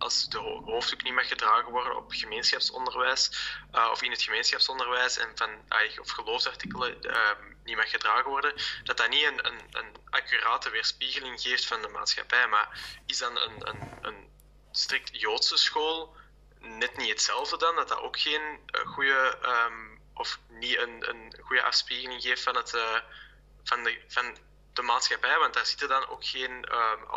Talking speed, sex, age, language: 170 wpm, male, 10-29, English